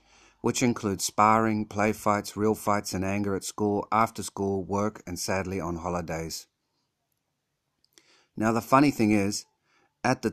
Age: 50-69